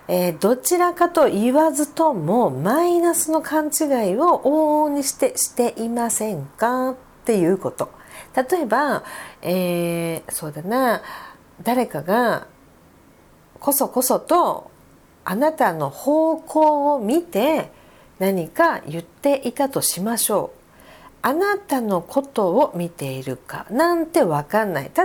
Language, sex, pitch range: Japanese, female, 185-305 Hz